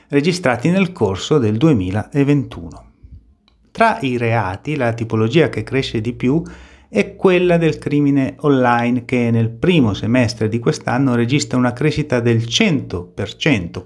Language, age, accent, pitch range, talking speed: Italian, 30-49, native, 110-145 Hz, 130 wpm